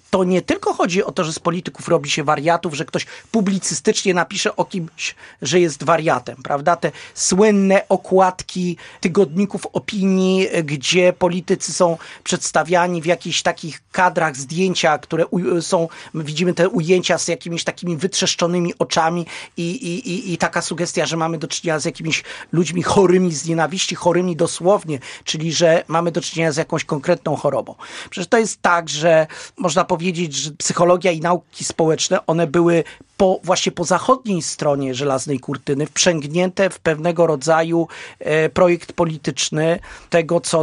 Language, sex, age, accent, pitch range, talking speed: Polish, male, 40-59, native, 150-180 Hz, 150 wpm